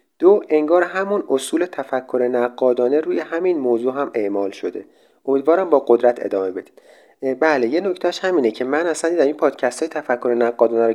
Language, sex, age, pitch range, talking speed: Persian, male, 30-49, 125-180 Hz, 170 wpm